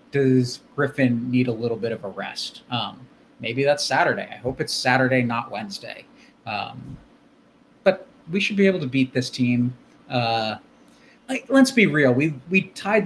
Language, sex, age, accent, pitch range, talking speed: English, male, 30-49, American, 125-195 Hz, 170 wpm